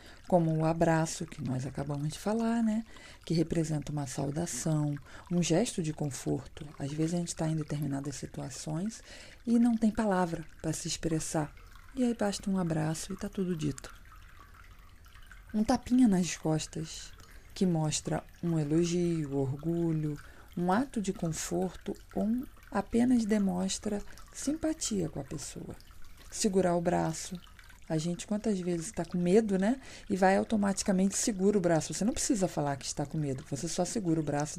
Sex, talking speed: female, 160 wpm